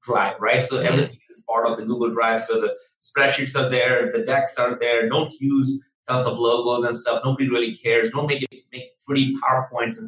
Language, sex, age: English, male, 30-49